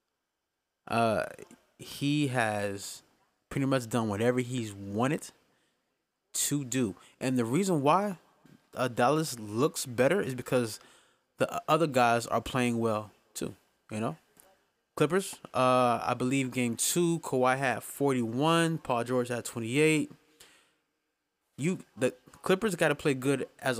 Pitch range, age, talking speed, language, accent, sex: 115-145 Hz, 20-39, 130 wpm, English, American, male